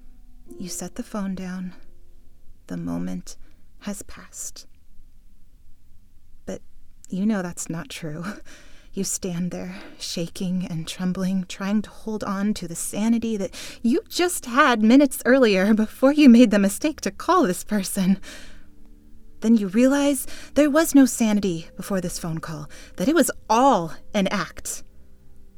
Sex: female